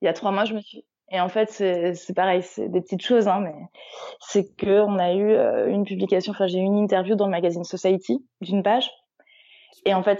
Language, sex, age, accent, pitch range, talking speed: French, female, 20-39, French, 185-220 Hz, 245 wpm